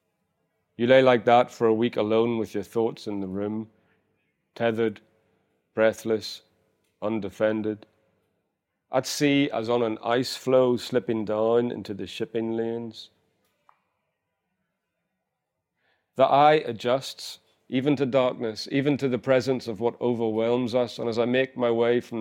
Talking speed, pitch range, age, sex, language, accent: 140 wpm, 110-120 Hz, 40-59, male, English, British